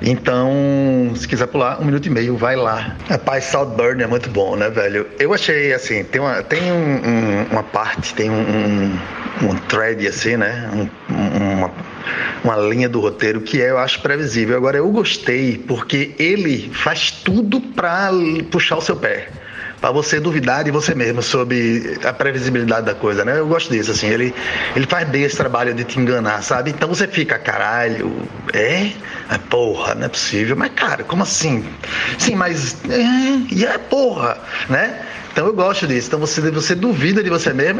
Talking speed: 180 wpm